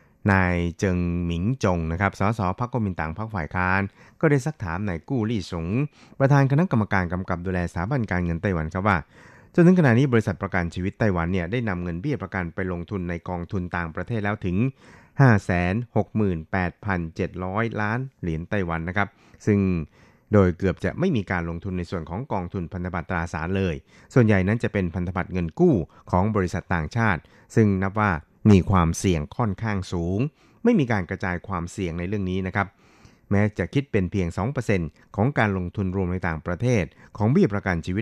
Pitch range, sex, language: 90-110 Hz, male, Thai